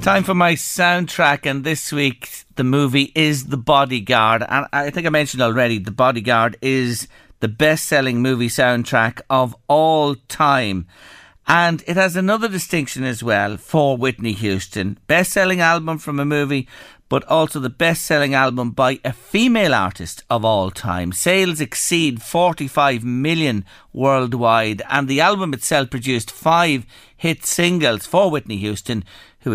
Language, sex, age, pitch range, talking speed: English, male, 50-69, 120-160 Hz, 145 wpm